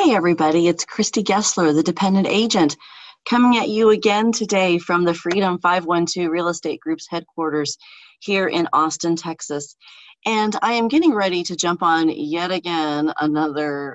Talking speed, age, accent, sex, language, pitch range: 155 wpm, 30-49, American, female, English, 150-195 Hz